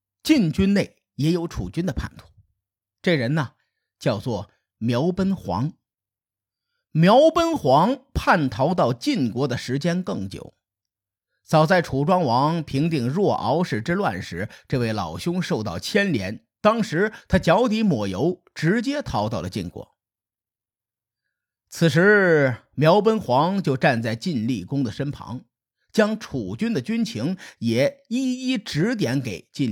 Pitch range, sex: 110-180 Hz, male